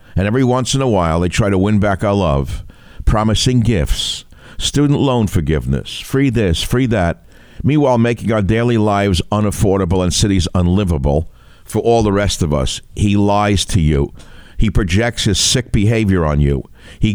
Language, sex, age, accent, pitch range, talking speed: English, male, 60-79, American, 85-115 Hz, 170 wpm